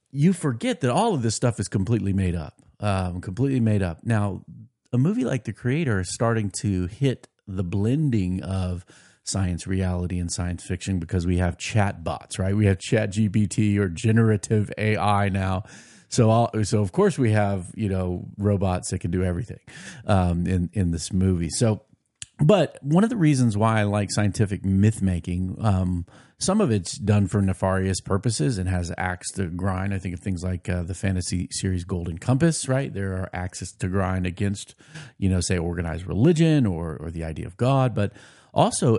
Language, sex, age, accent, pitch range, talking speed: English, male, 40-59, American, 90-115 Hz, 190 wpm